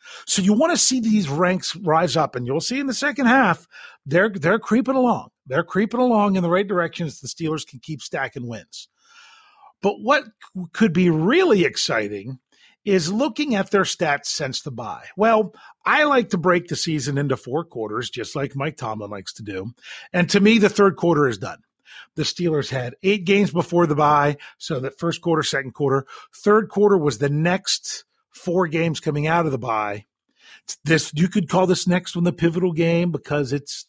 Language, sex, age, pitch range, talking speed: English, male, 40-59, 140-200 Hz, 195 wpm